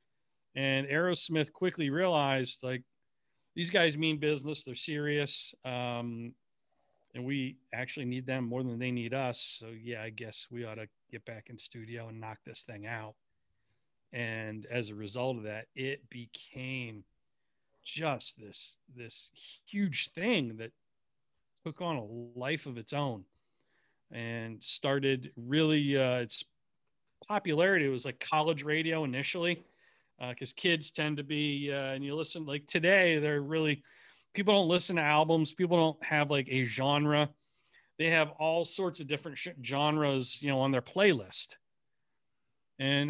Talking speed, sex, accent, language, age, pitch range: 150 wpm, male, American, English, 40-59, 125-155 Hz